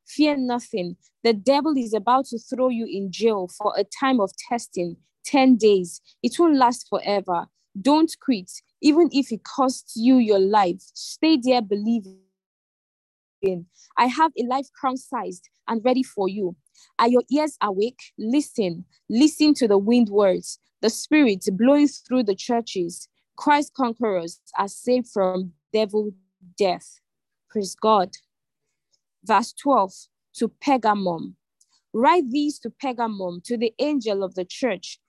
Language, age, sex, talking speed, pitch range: English, 20-39, female, 140 wpm, 200-270 Hz